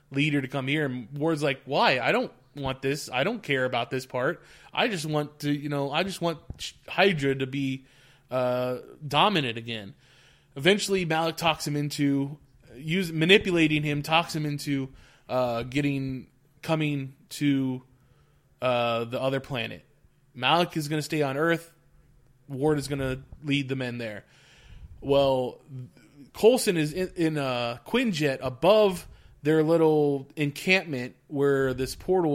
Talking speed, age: 150 wpm, 20-39